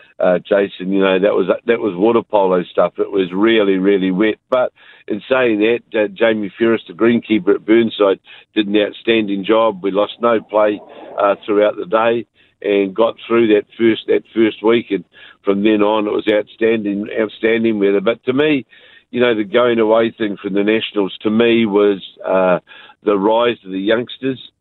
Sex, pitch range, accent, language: male, 105-115 Hz, Australian, English